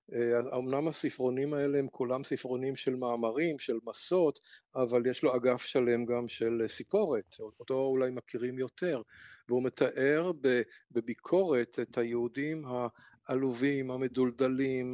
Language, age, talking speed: Hebrew, 50-69, 115 wpm